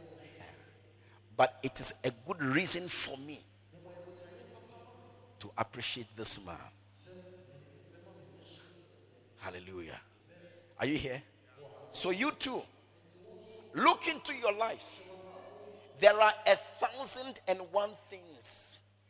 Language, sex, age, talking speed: English, male, 50-69, 95 wpm